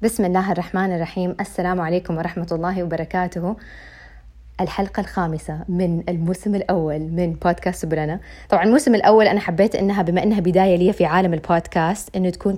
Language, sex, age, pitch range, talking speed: Arabic, female, 20-39, 160-190 Hz, 155 wpm